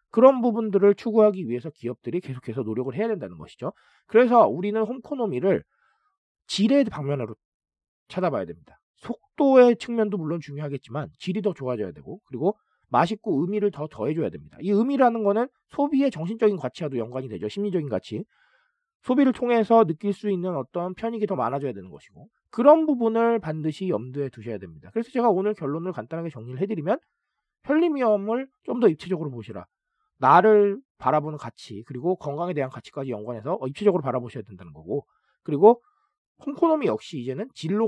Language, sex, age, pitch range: Korean, male, 40-59, 140-230 Hz